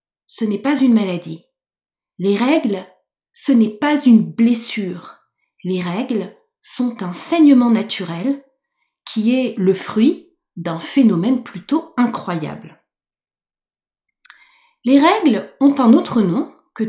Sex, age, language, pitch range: female, 30-49, French, 195-280 Hz